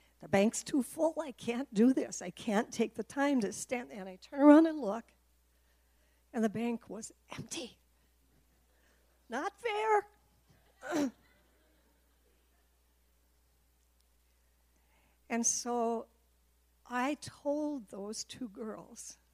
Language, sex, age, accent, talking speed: English, female, 60-79, American, 110 wpm